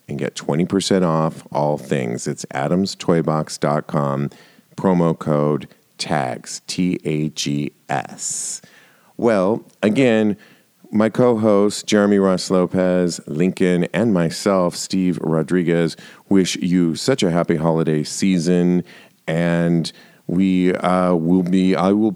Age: 40-59